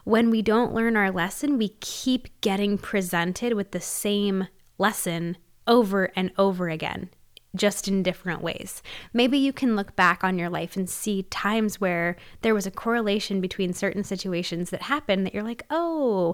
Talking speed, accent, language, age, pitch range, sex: 175 wpm, American, English, 10-29, 190-225 Hz, female